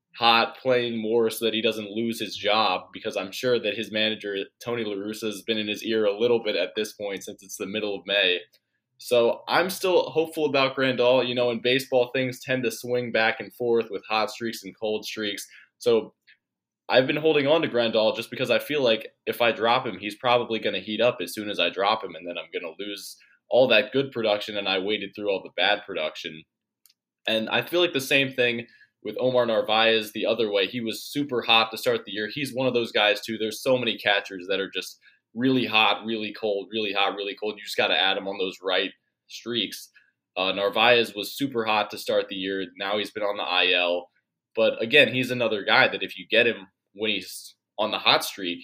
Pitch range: 100-120 Hz